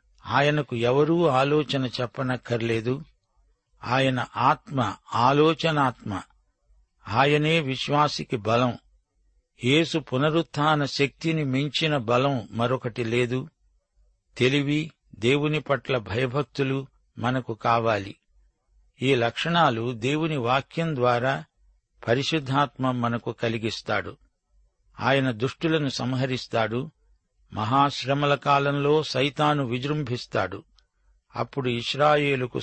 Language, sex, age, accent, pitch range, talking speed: Telugu, male, 60-79, native, 120-145 Hz, 75 wpm